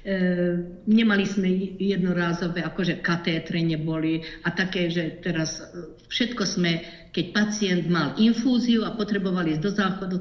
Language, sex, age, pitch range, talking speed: Slovak, female, 50-69, 160-190 Hz, 125 wpm